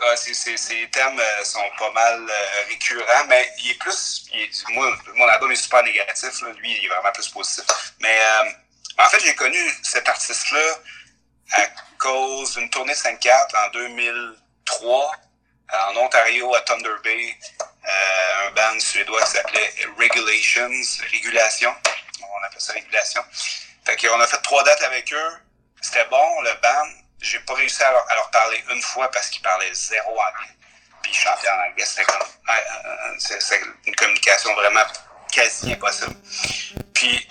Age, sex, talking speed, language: 30-49, male, 165 wpm, French